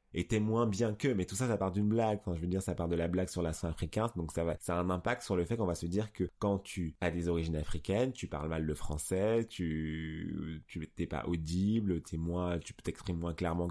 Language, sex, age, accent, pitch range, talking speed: French, male, 20-39, French, 80-95 Hz, 265 wpm